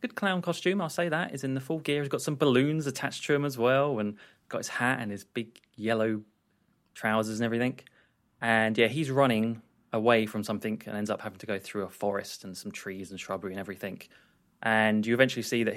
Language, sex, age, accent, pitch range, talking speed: English, male, 20-39, British, 105-135 Hz, 225 wpm